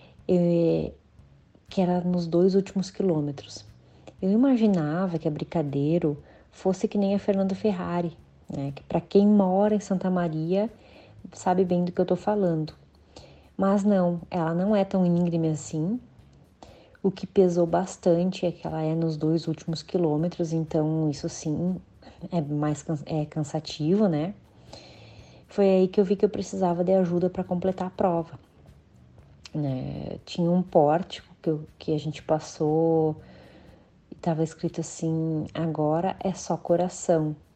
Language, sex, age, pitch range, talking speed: Portuguese, female, 30-49, 155-185 Hz, 145 wpm